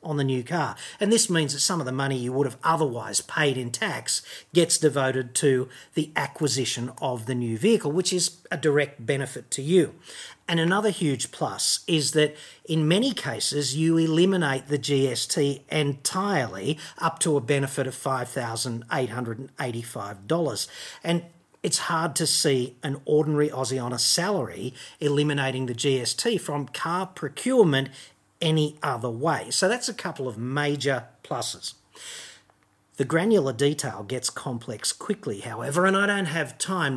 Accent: Australian